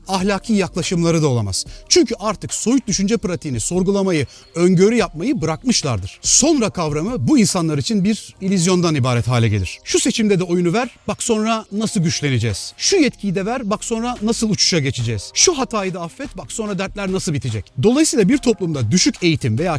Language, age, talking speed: Turkish, 40-59, 170 wpm